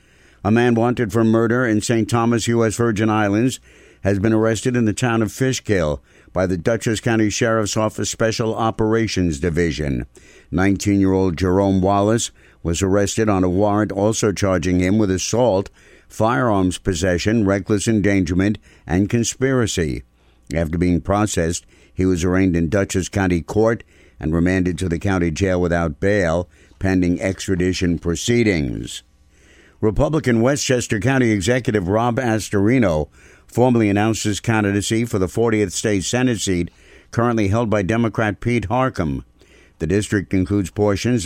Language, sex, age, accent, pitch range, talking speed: English, male, 60-79, American, 90-115 Hz, 135 wpm